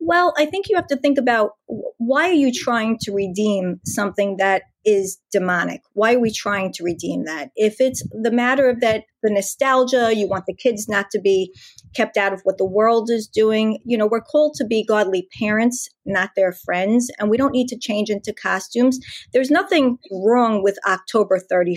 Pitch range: 195-245 Hz